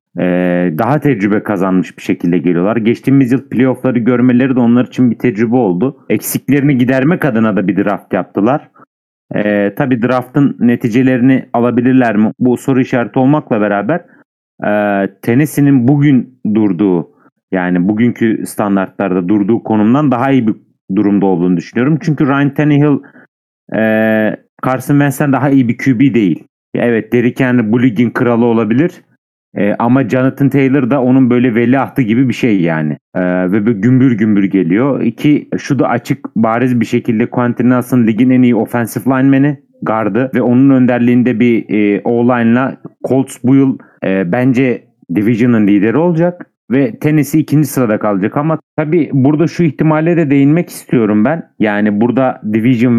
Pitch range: 110-135 Hz